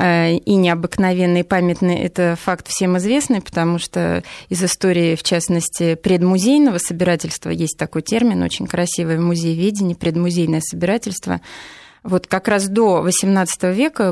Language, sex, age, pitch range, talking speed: Russian, female, 20-39, 170-190 Hz, 130 wpm